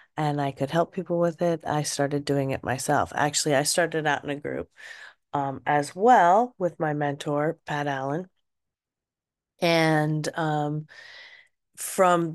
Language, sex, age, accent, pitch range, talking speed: English, female, 30-49, American, 145-185 Hz, 145 wpm